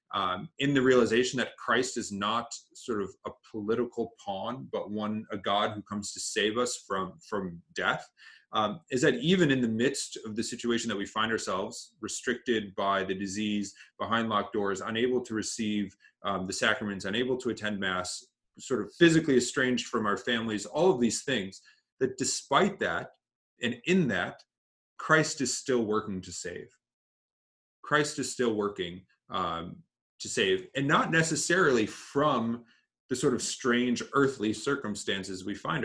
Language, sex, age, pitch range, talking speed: English, male, 30-49, 105-135 Hz, 165 wpm